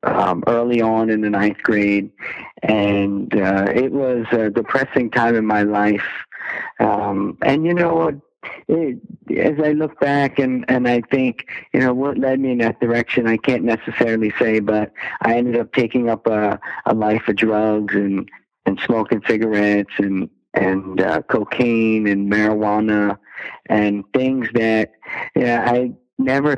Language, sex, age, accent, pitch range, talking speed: English, male, 50-69, American, 105-125 Hz, 150 wpm